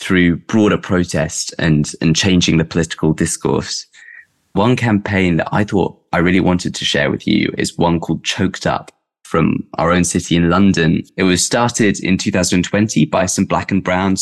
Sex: male